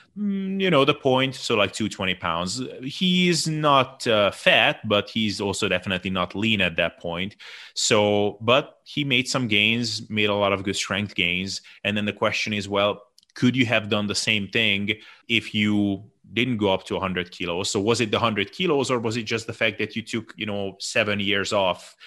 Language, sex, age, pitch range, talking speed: English, male, 30-49, 95-115 Hz, 205 wpm